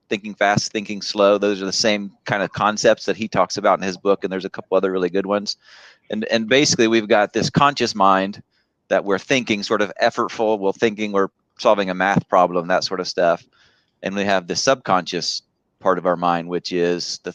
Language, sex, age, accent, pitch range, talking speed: English, male, 30-49, American, 95-115 Hz, 220 wpm